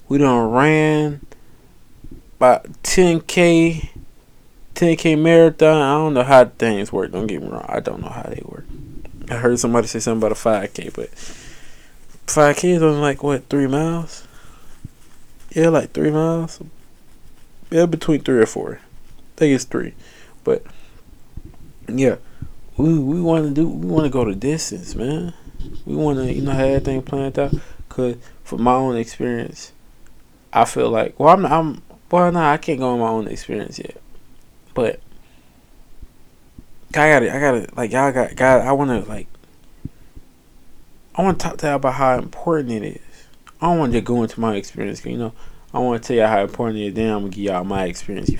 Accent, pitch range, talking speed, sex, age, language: American, 115-160 Hz, 185 wpm, male, 20-39, English